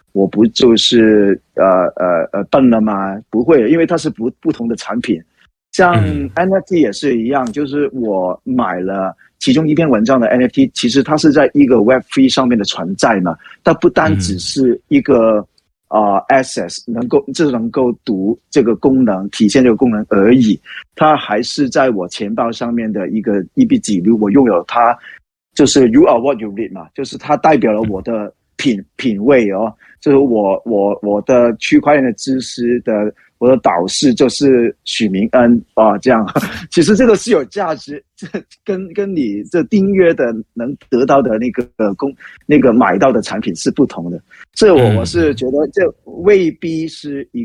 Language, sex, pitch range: Chinese, male, 105-150 Hz